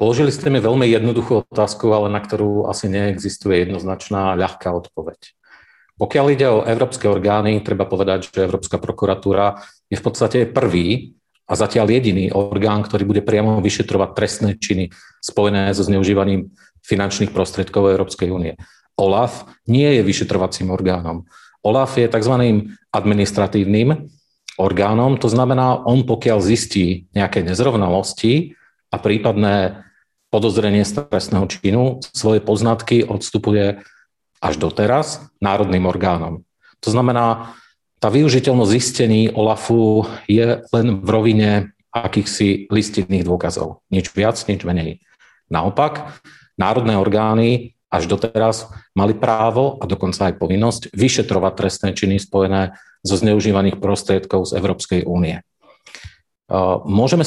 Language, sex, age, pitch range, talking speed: Slovak, male, 40-59, 95-115 Hz, 120 wpm